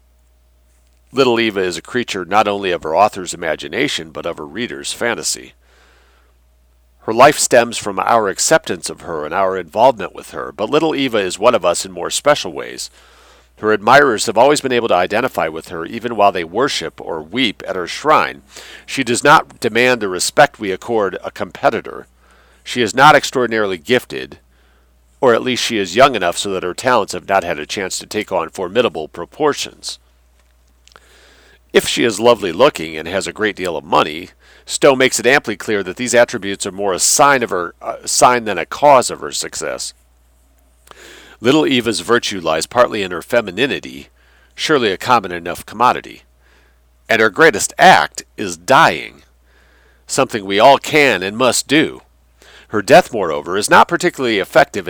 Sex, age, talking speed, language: male, 50-69, 175 wpm, English